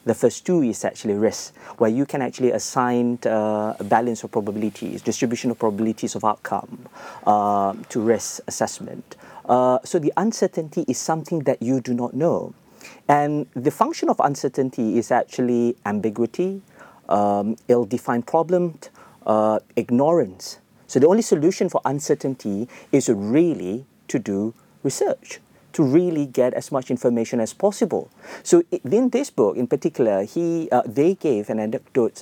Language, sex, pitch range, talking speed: English, male, 120-165 Hz, 150 wpm